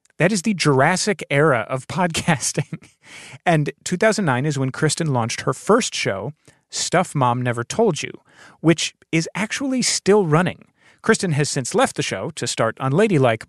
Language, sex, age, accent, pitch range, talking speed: English, male, 30-49, American, 125-175 Hz, 160 wpm